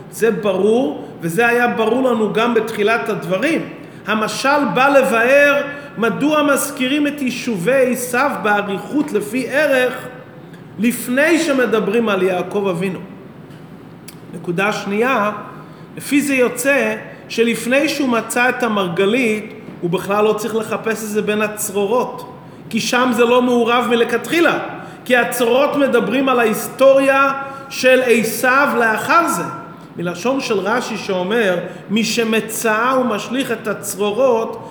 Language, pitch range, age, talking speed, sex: Hebrew, 205-255 Hz, 40-59, 120 wpm, male